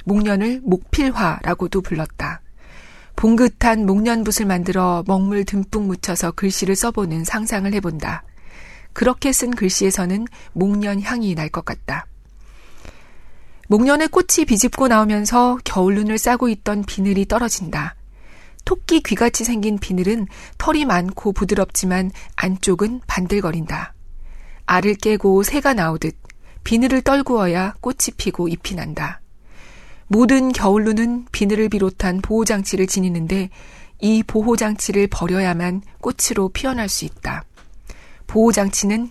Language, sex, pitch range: Korean, female, 185-230 Hz